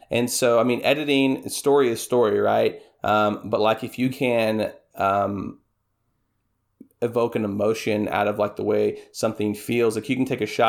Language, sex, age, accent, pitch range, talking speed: English, male, 30-49, American, 110-125 Hz, 180 wpm